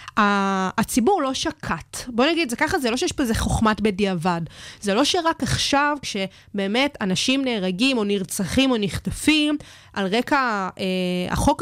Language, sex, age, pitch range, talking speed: Hebrew, female, 20-39, 205-265 Hz, 150 wpm